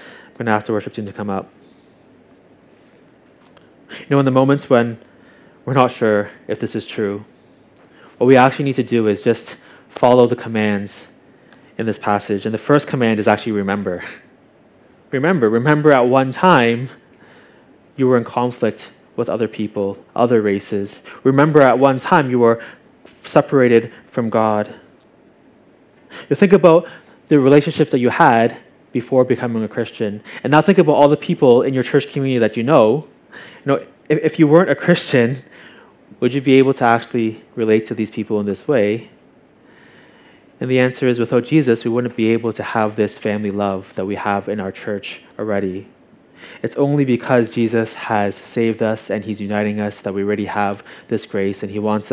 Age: 20-39